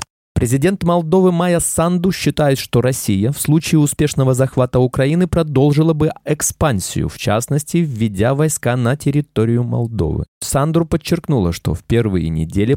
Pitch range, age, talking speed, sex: 115-155 Hz, 20-39, 130 wpm, male